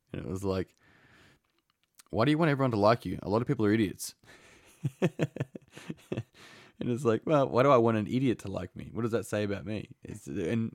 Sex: male